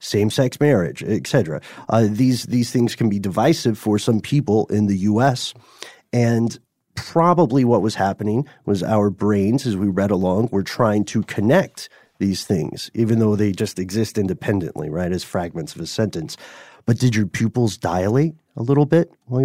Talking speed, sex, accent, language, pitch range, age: 175 wpm, male, American, English, 105-130 Hz, 30-49